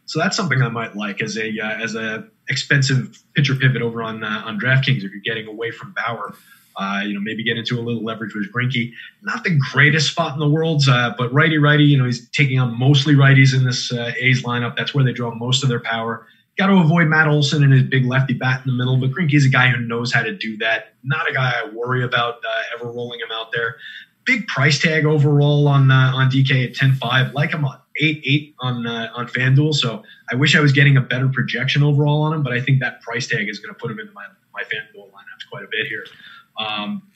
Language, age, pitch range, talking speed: English, 30-49, 120-140 Hz, 245 wpm